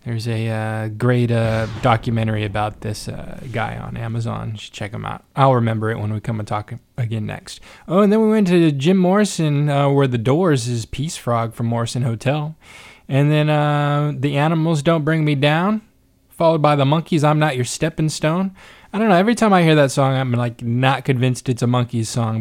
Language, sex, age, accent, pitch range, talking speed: English, male, 20-39, American, 120-175 Hz, 215 wpm